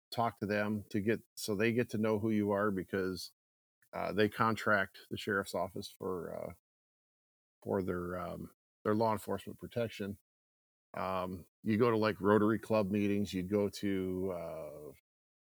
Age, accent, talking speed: 50-69, American, 160 wpm